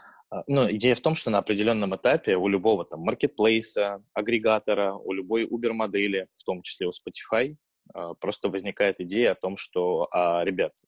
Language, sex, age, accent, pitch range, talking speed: Russian, male, 20-39, native, 85-110 Hz, 165 wpm